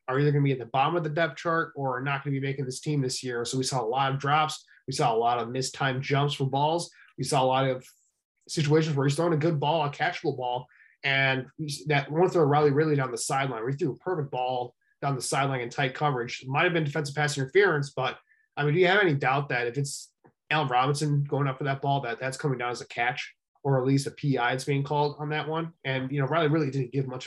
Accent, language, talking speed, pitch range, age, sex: American, English, 270 wpm, 135-160 Hz, 20-39, male